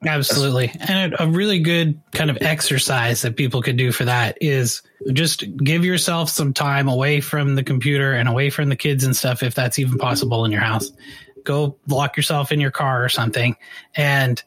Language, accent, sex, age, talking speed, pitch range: English, American, male, 30-49, 195 wpm, 125-150 Hz